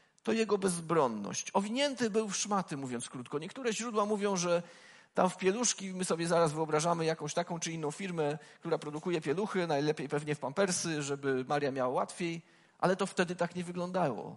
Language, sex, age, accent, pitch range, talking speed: Polish, male, 40-59, native, 150-195 Hz, 175 wpm